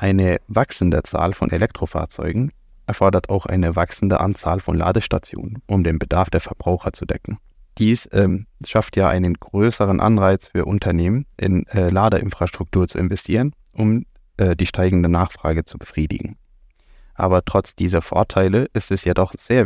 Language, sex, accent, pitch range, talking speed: German, male, German, 85-100 Hz, 145 wpm